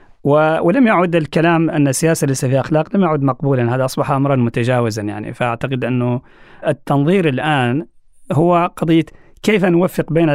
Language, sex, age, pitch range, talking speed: Arabic, male, 40-59, 130-165 Hz, 145 wpm